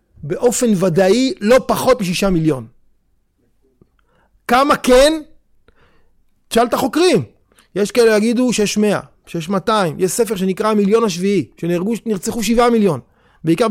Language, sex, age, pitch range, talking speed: Hebrew, male, 30-49, 185-235 Hz, 120 wpm